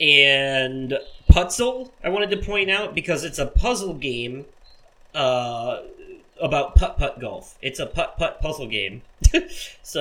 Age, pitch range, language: 30-49, 125-160 Hz, English